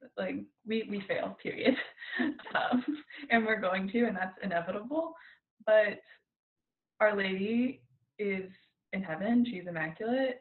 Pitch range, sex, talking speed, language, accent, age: 185-240 Hz, female, 120 wpm, English, American, 20-39